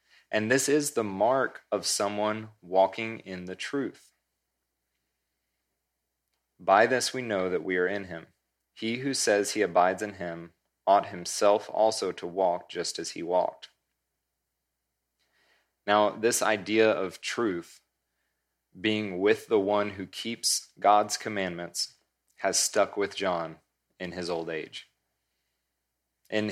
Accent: American